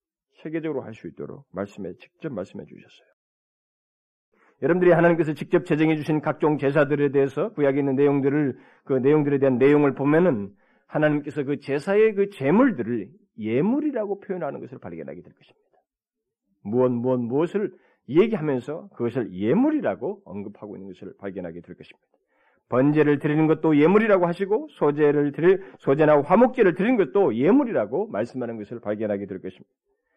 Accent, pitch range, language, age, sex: native, 145-205 Hz, Korean, 40-59, male